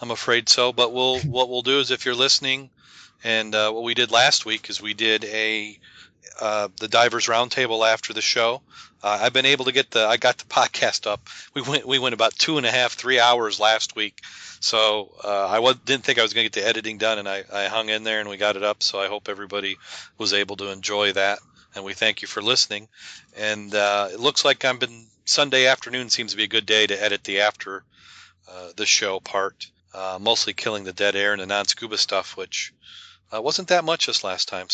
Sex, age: male, 40-59